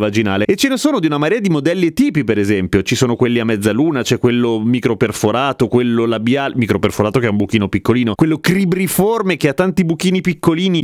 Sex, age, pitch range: male, 30-49, 115-170 Hz